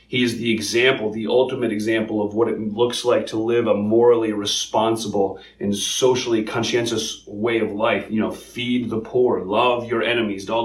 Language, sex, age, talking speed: English, male, 30-49, 180 wpm